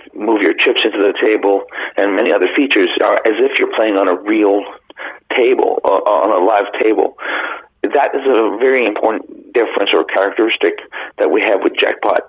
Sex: male